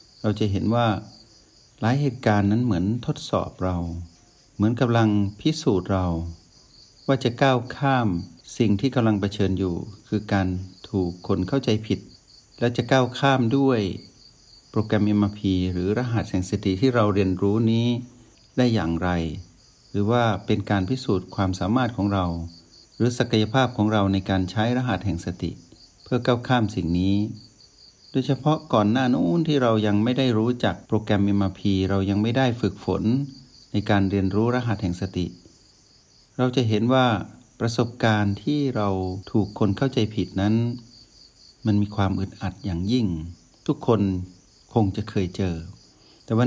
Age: 60-79